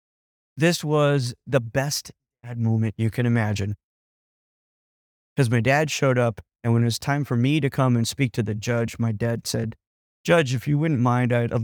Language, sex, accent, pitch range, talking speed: English, male, American, 115-155 Hz, 195 wpm